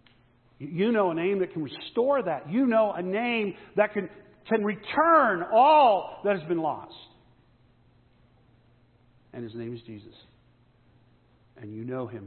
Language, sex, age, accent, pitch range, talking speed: English, male, 50-69, American, 120-140 Hz, 145 wpm